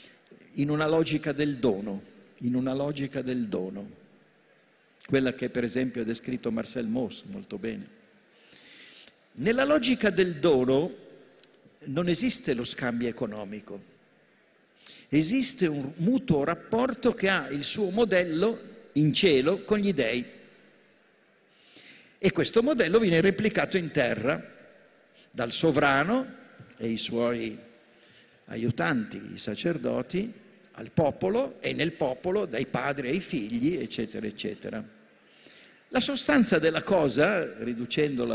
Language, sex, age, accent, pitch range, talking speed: Italian, male, 50-69, native, 125-215 Hz, 115 wpm